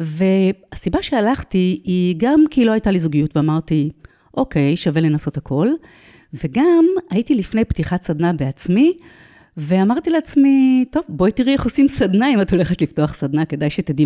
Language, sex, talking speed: Hebrew, female, 150 wpm